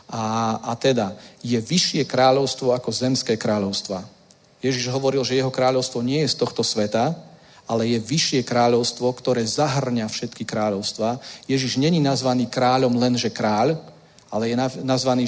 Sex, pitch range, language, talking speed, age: male, 120-145 Hz, Czech, 140 wpm, 40-59